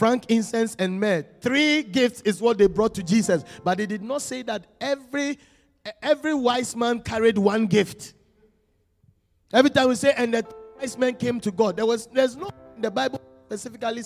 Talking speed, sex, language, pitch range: 190 wpm, male, English, 210-300 Hz